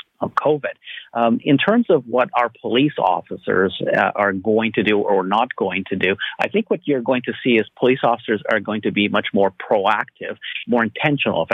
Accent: American